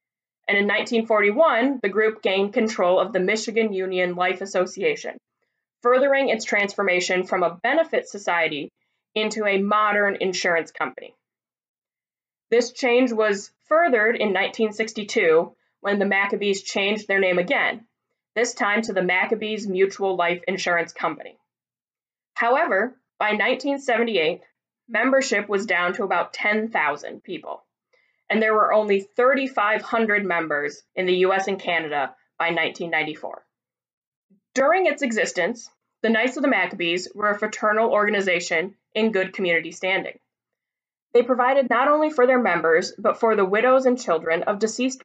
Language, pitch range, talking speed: English, 185-245 Hz, 135 wpm